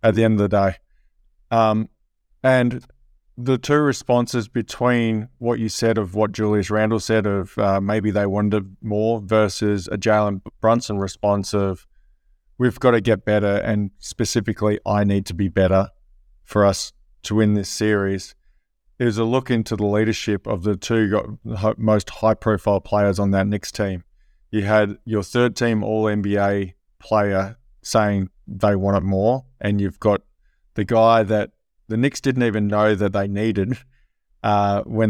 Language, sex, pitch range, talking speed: English, male, 95-110 Hz, 160 wpm